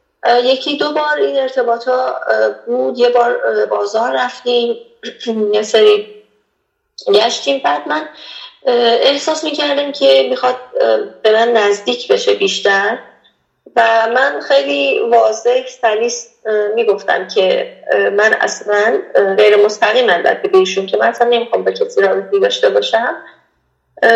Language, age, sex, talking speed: Persian, 30-49, female, 120 wpm